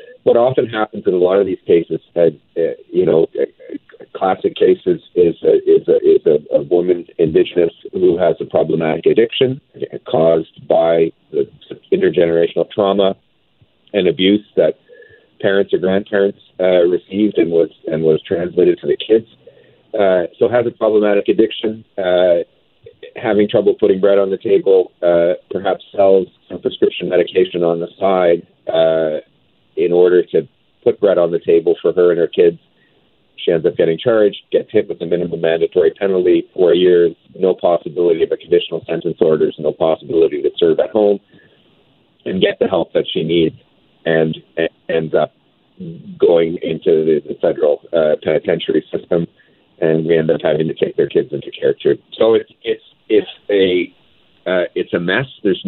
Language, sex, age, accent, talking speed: English, male, 50-69, American, 165 wpm